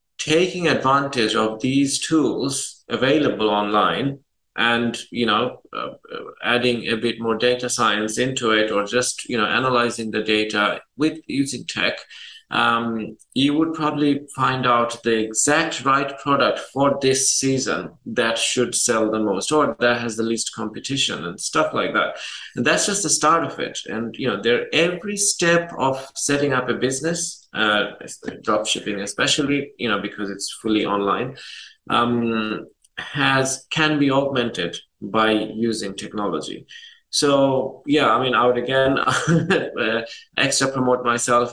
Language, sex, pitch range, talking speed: English, male, 115-150 Hz, 150 wpm